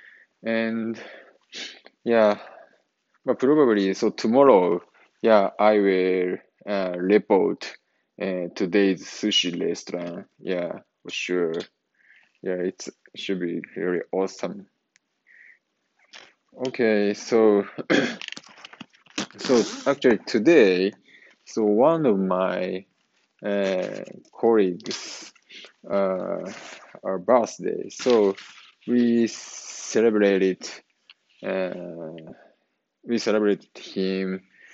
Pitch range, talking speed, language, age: 95-110 Hz, 80 wpm, English, 20-39